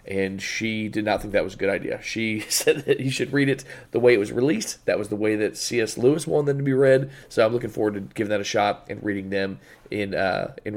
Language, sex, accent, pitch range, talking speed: English, male, American, 110-140 Hz, 265 wpm